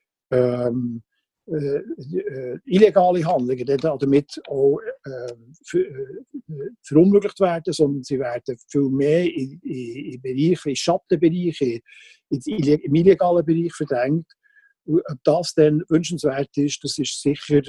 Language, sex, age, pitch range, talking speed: German, male, 50-69, 140-170 Hz, 120 wpm